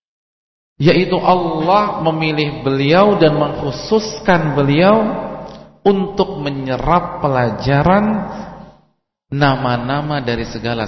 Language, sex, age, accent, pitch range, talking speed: English, male, 40-59, Indonesian, 110-170 Hz, 70 wpm